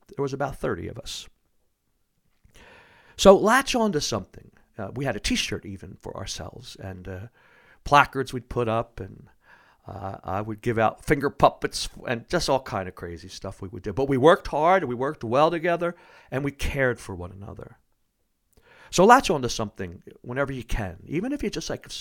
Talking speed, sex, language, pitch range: 190 wpm, male, English, 105-140 Hz